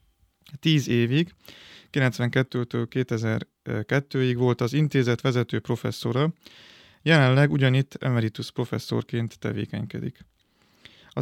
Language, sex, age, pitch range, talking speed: Hungarian, male, 30-49, 120-140 Hz, 80 wpm